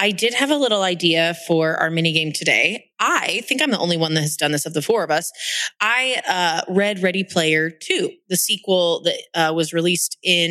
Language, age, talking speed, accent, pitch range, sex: English, 20-39, 225 wpm, American, 170-220 Hz, female